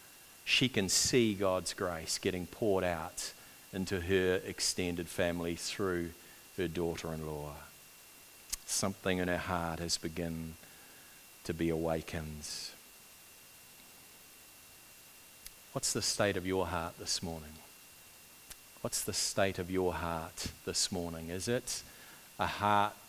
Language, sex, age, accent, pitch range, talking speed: English, male, 40-59, Australian, 85-105 Hz, 115 wpm